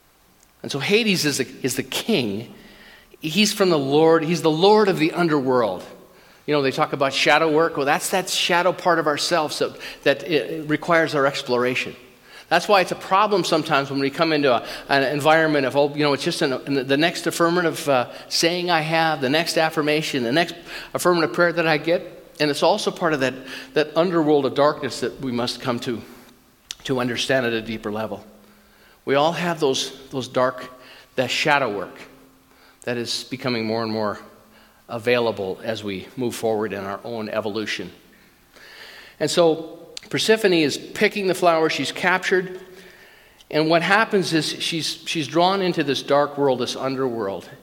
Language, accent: English, American